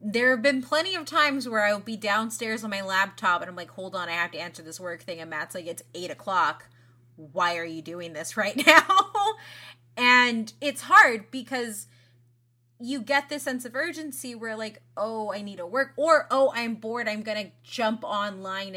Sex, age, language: female, 20-39, English